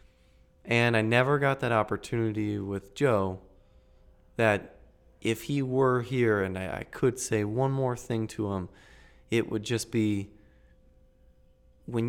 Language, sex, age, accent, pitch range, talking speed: English, male, 20-39, American, 95-120 Hz, 140 wpm